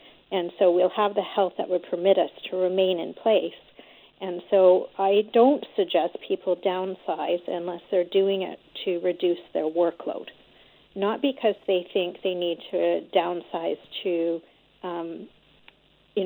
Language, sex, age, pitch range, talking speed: English, female, 40-59, 175-200 Hz, 150 wpm